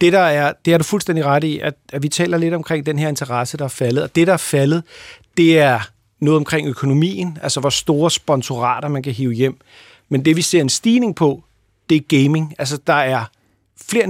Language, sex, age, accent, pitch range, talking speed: Danish, male, 40-59, native, 140-175 Hz, 225 wpm